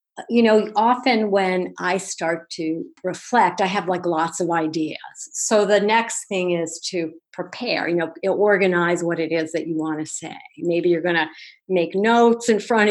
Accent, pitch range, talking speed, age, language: American, 170-210 Hz, 185 wpm, 50-69, English